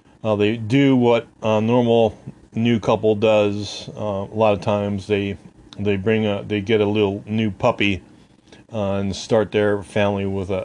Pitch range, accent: 95-115 Hz, American